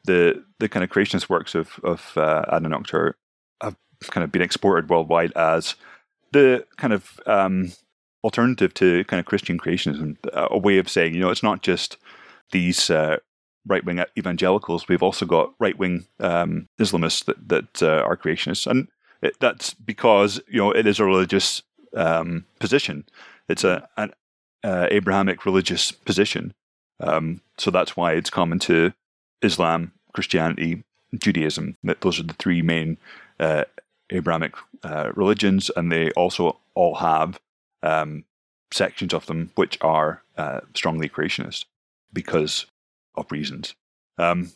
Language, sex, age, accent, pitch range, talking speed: English, male, 30-49, British, 85-115 Hz, 145 wpm